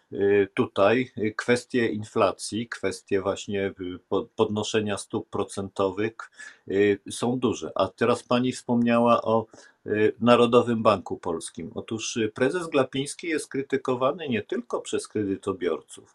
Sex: male